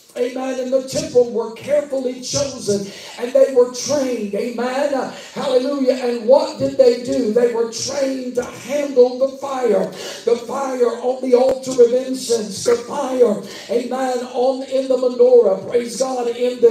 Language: English